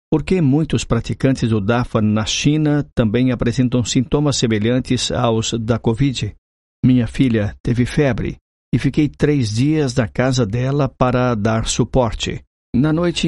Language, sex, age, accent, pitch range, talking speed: Portuguese, male, 50-69, Brazilian, 115-140 Hz, 135 wpm